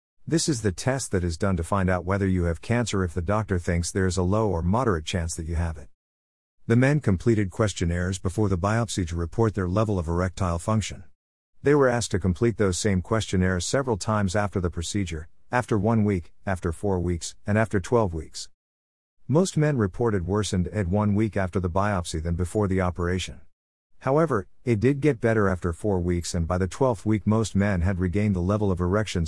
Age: 50-69